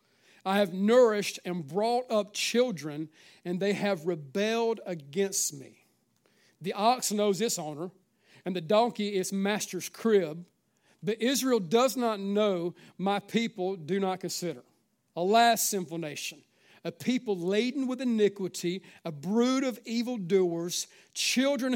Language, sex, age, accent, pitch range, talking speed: English, male, 50-69, American, 165-215 Hz, 130 wpm